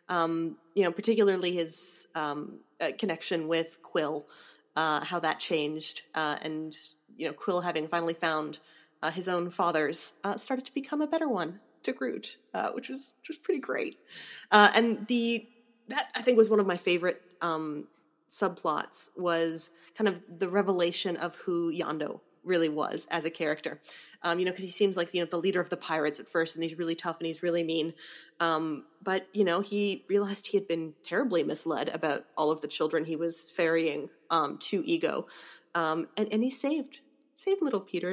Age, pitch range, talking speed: 30-49, 165-210 Hz, 190 wpm